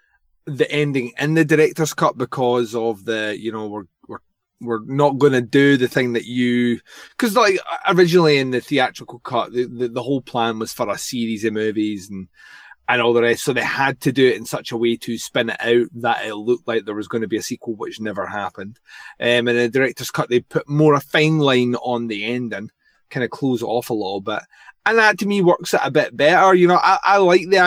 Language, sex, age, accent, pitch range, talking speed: English, male, 20-39, British, 120-160 Hz, 240 wpm